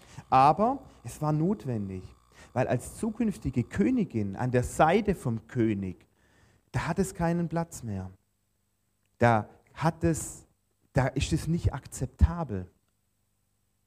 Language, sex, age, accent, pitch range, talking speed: German, male, 30-49, German, 105-150 Hz, 115 wpm